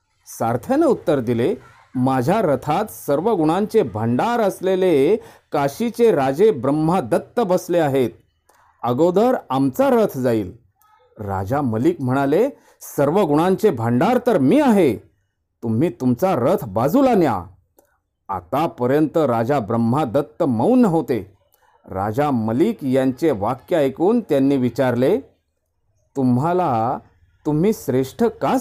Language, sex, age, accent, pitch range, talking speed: Marathi, male, 40-59, native, 115-185 Hz, 85 wpm